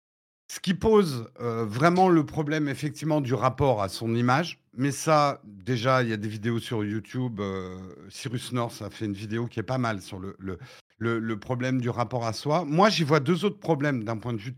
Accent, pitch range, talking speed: French, 115-165 Hz, 220 wpm